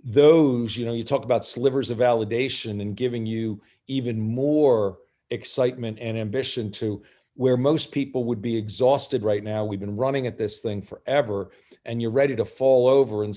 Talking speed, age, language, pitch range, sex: 180 wpm, 50-69, English, 110-135 Hz, male